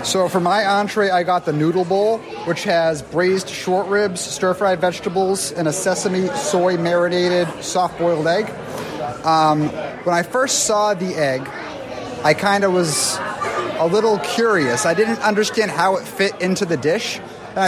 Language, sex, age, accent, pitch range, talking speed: English, male, 30-49, American, 160-195 Hz, 155 wpm